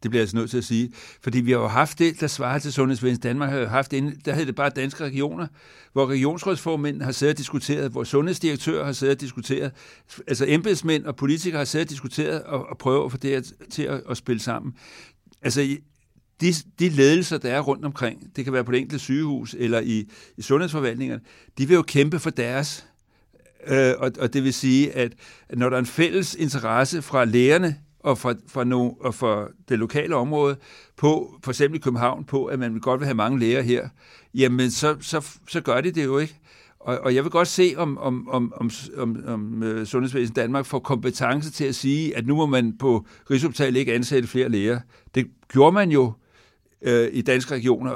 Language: English